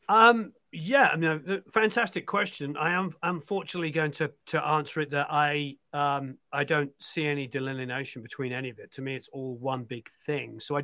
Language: English